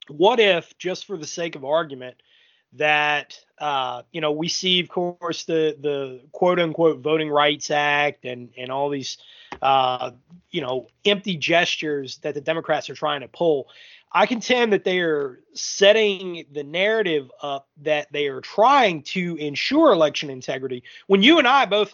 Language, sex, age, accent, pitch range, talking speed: English, male, 30-49, American, 140-185 Hz, 165 wpm